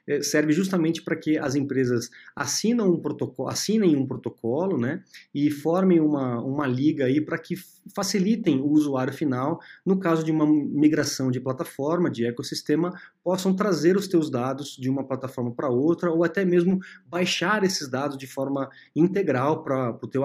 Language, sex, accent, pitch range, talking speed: Portuguese, male, Brazilian, 135-170 Hz, 160 wpm